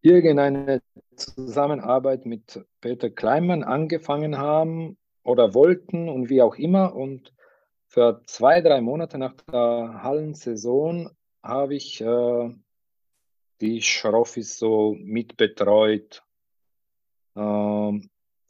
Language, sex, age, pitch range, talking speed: German, male, 40-59, 115-145 Hz, 95 wpm